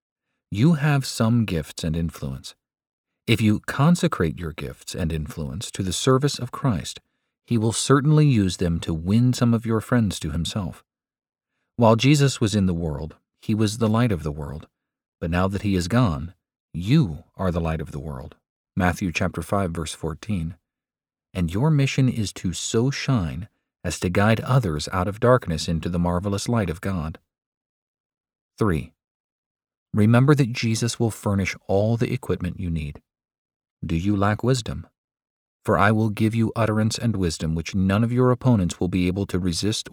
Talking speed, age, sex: 175 wpm, 40-59, male